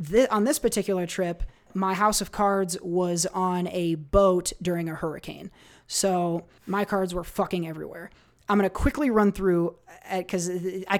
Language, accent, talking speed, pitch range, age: English, American, 160 wpm, 170-195 Hz, 20-39